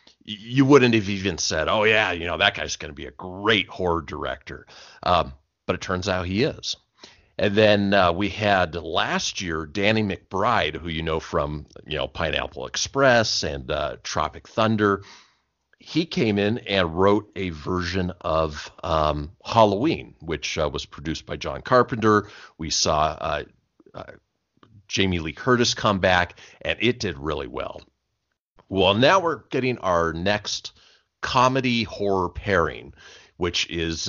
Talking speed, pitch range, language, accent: 155 wpm, 85-110 Hz, English, American